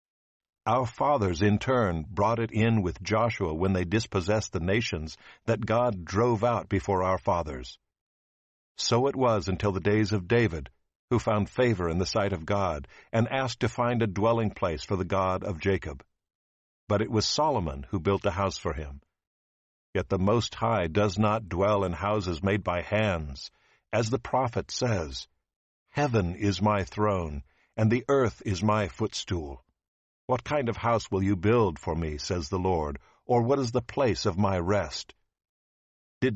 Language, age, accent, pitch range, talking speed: English, 60-79, American, 90-115 Hz, 175 wpm